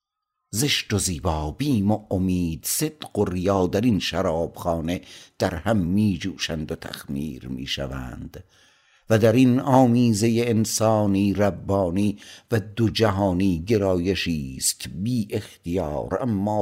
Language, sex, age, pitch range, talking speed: Persian, male, 60-79, 80-110 Hz, 115 wpm